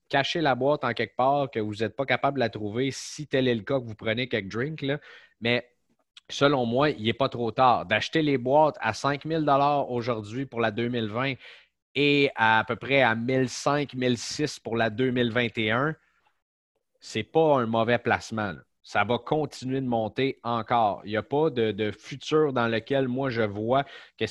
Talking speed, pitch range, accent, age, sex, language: 195 wpm, 115-140 Hz, Canadian, 30-49, male, French